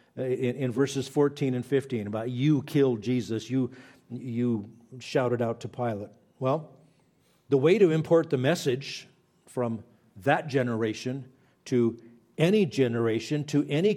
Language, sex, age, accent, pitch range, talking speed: English, male, 50-69, American, 125-160 Hz, 130 wpm